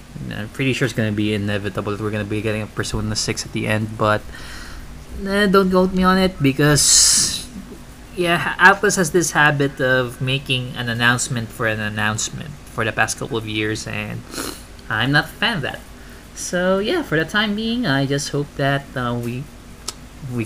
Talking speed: 195 wpm